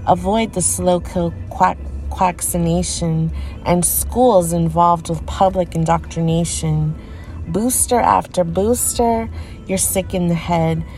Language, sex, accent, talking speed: English, female, American, 100 wpm